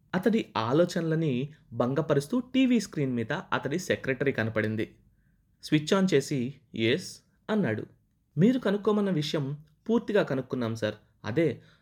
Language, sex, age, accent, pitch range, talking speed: Telugu, male, 20-39, native, 120-170 Hz, 105 wpm